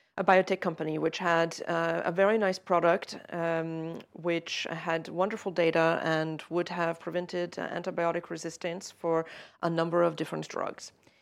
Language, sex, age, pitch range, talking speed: English, female, 40-59, 170-210 Hz, 150 wpm